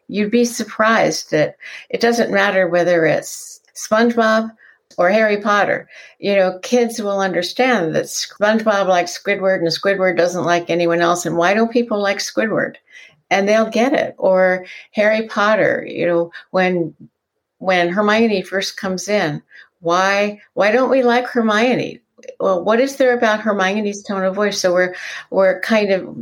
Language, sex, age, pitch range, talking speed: English, female, 60-79, 175-220 Hz, 160 wpm